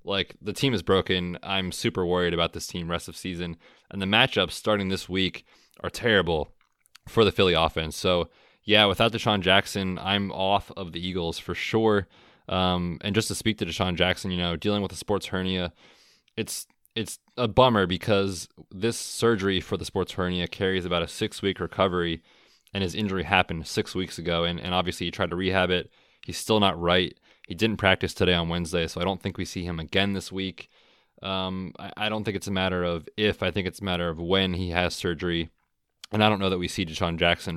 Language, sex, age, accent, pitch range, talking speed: English, male, 20-39, American, 85-100 Hz, 210 wpm